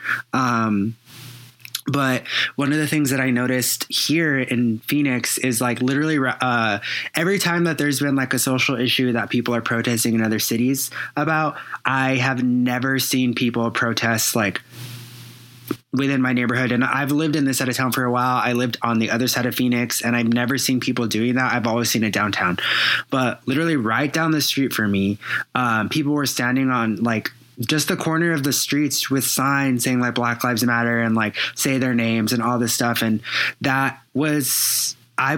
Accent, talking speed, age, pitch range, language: American, 195 wpm, 20-39, 120-135 Hz, English